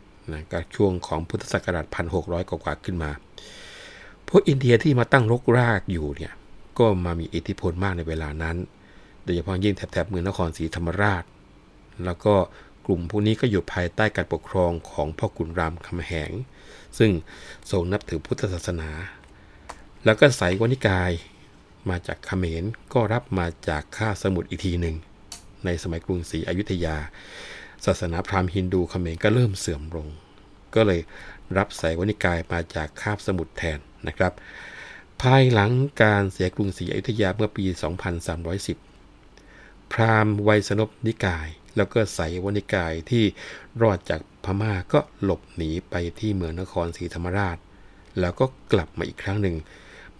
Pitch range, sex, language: 85-105 Hz, male, Thai